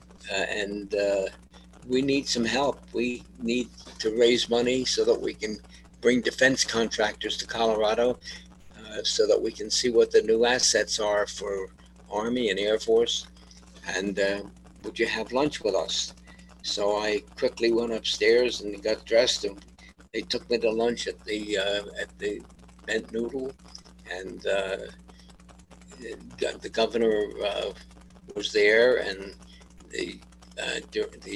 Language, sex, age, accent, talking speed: English, male, 60-79, American, 145 wpm